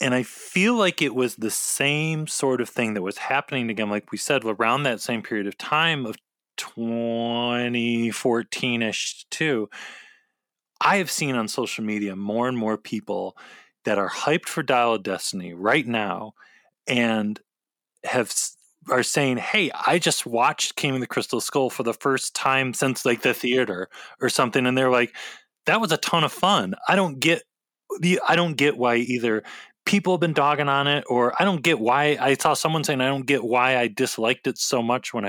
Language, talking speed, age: English, 195 wpm, 20-39